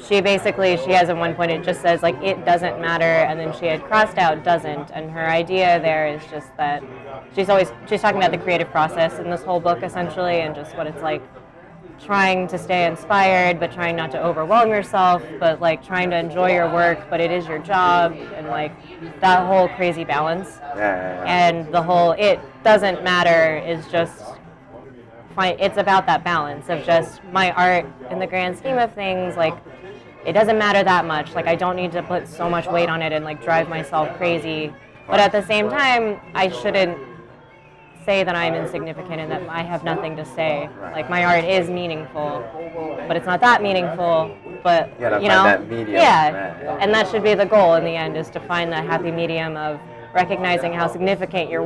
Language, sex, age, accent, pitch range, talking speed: English, female, 20-39, American, 160-185 Hz, 195 wpm